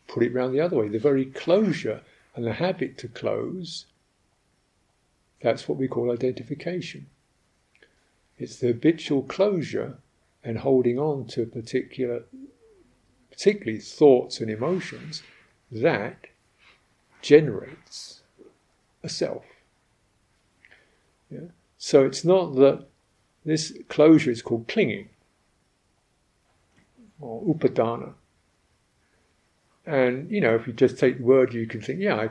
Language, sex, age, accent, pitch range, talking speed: English, male, 50-69, British, 115-150 Hz, 115 wpm